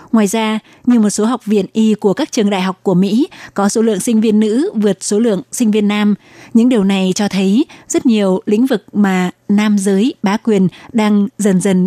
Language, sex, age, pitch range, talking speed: Vietnamese, female, 20-39, 195-230 Hz, 220 wpm